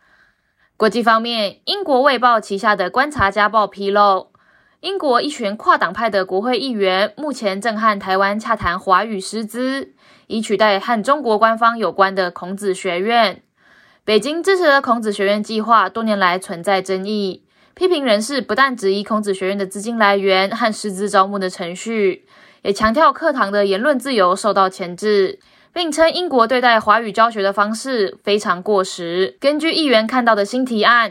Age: 20-39